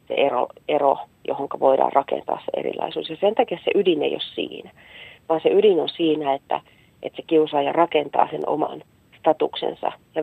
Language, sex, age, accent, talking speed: Finnish, female, 40-59, native, 175 wpm